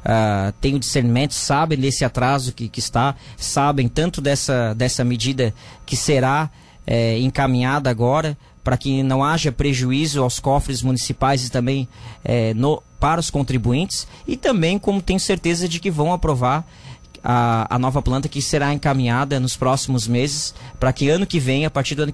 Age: 20-39